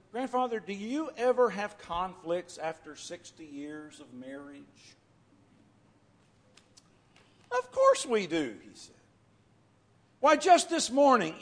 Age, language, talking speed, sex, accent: 50-69, English, 110 wpm, male, American